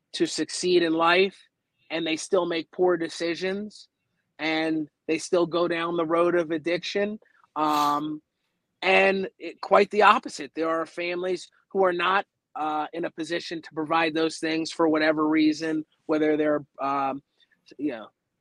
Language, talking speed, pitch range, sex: English, 155 wpm, 155-190 Hz, male